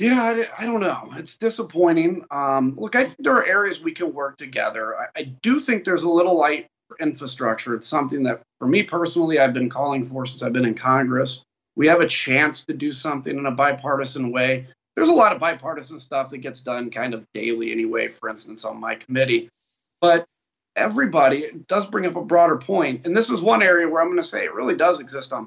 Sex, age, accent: male, 30-49, American